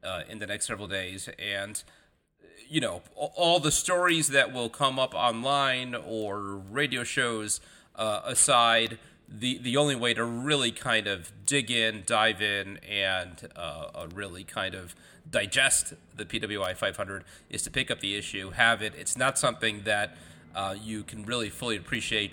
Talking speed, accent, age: 165 wpm, American, 30-49